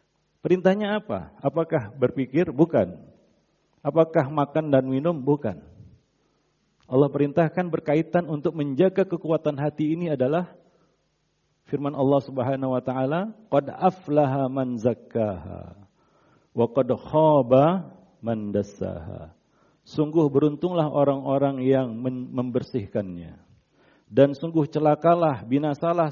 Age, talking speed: 50-69, 85 wpm